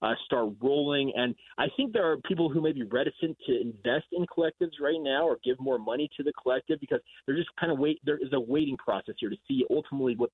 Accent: American